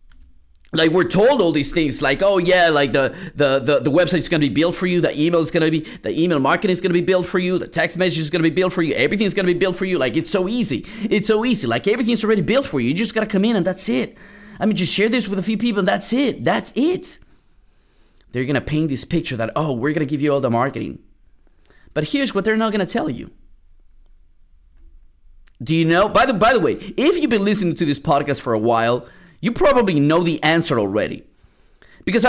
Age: 30-49